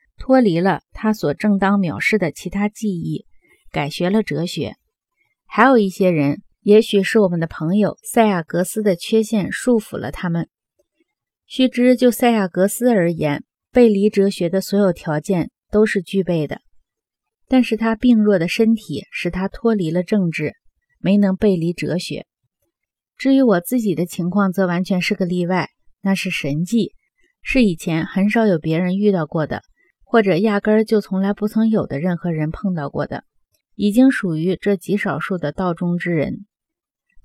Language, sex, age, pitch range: Chinese, female, 30-49, 175-220 Hz